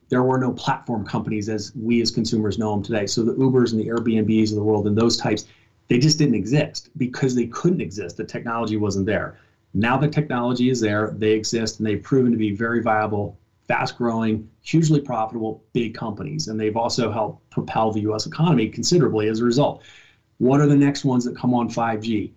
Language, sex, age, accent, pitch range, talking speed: English, male, 30-49, American, 110-125 Hz, 205 wpm